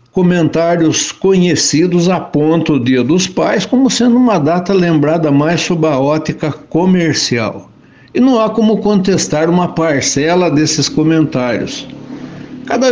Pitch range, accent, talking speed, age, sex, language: 150-200 Hz, Brazilian, 125 wpm, 60-79, male, Portuguese